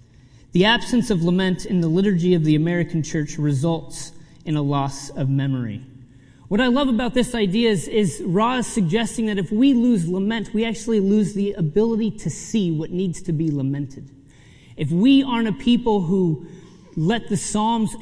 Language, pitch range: English, 150-210 Hz